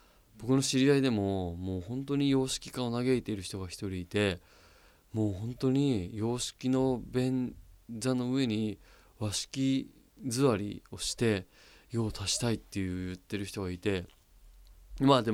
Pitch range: 100-130 Hz